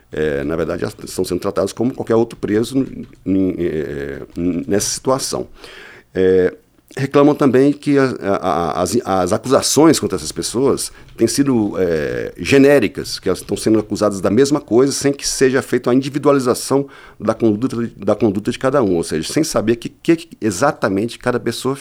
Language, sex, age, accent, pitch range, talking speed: Portuguese, male, 50-69, Brazilian, 100-135 Hz, 175 wpm